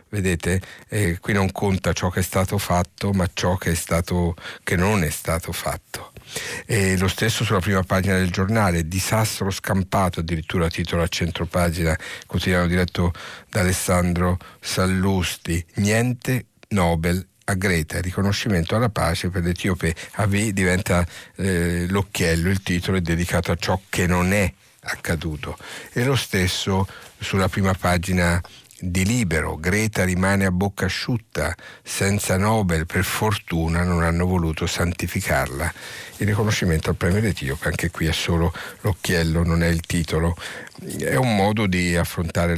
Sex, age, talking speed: male, 50-69, 145 wpm